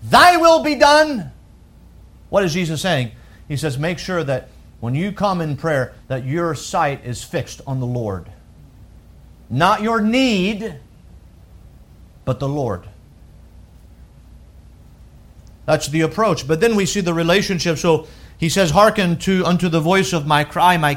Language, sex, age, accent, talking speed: English, male, 40-59, American, 150 wpm